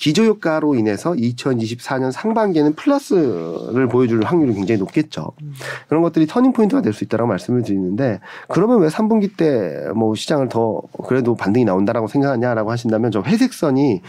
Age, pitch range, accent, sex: 40-59, 110-155 Hz, native, male